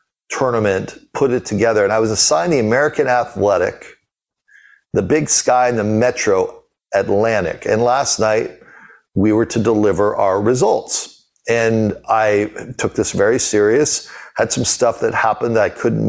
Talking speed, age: 155 wpm, 40-59